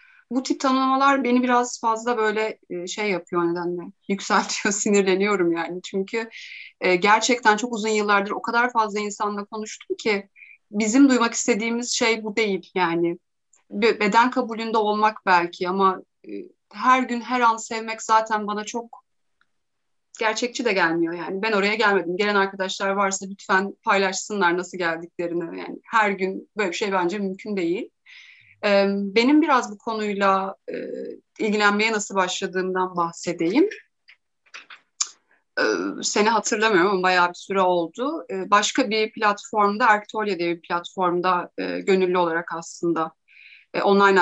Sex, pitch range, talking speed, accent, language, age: female, 185-230 Hz, 125 wpm, native, Turkish, 30-49